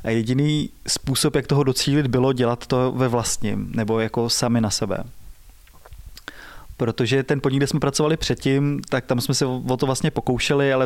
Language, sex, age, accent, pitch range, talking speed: Czech, male, 20-39, native, 120-140 Hz, 175 wpm